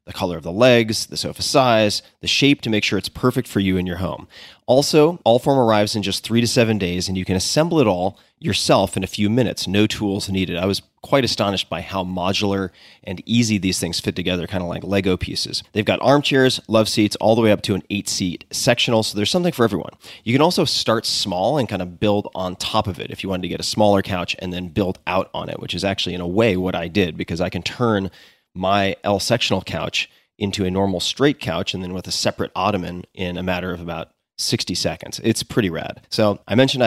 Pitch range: 90-115 Hz